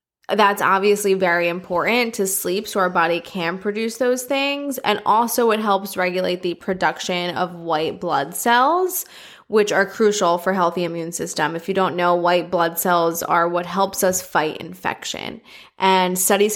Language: English